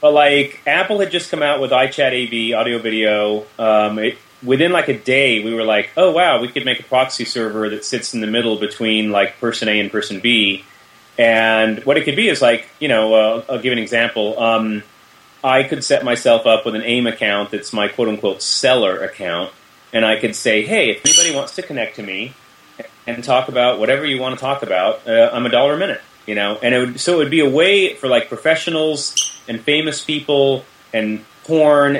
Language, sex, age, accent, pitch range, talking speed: English, male, 30-49, American, 110-150 Hz, 210 wpm